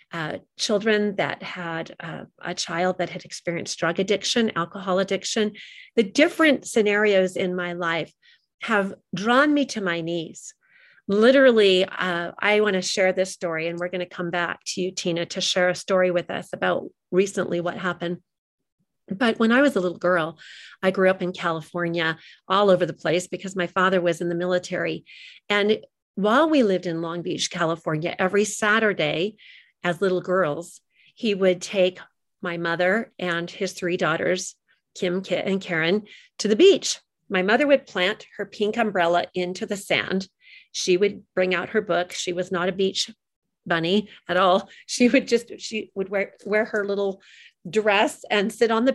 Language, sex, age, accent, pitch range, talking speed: English, female, 40-59, American, 175-210 Hz, 175 wpm